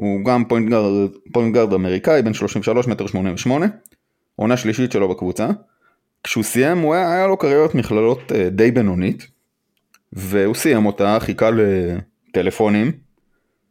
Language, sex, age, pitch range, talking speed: Hebrew, male, 20-39, 105-165 Hz, 125 wpm